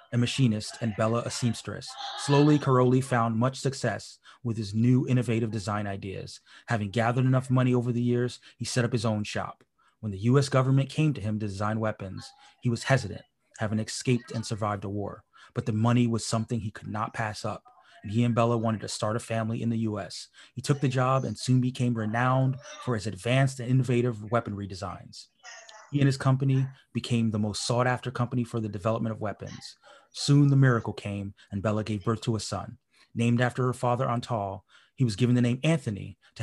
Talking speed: 205 wpm